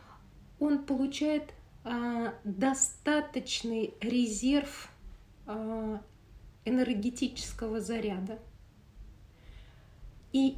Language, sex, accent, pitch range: Russian, female, native, 205-255 Hz